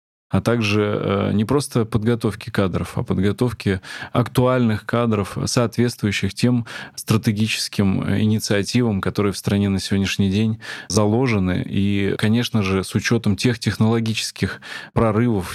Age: 20-39